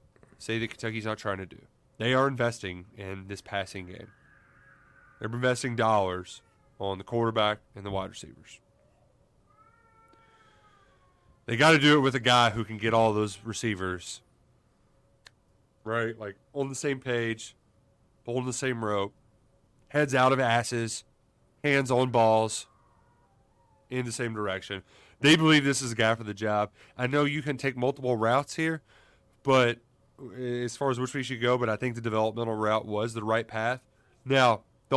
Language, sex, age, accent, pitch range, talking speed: English, male, 30-49, American, 110-135 Hz, 165 wpm